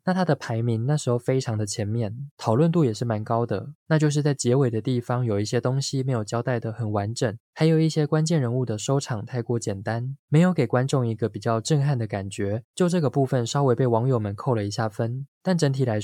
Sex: male